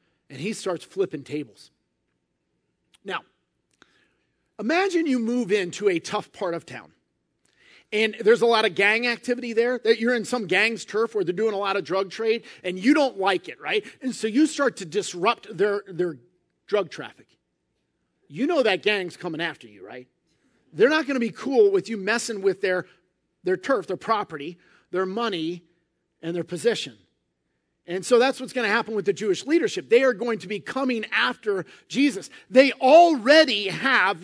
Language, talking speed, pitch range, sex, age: English, 180 wpm, 180-255 Hz, male, 40-59